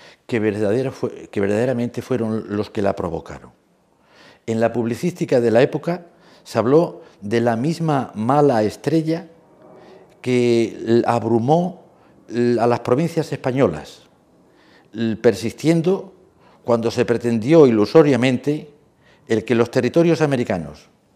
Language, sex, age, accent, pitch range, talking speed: Spanish, male, 50-69, Spanish, 115-155 Hz, 105 wpm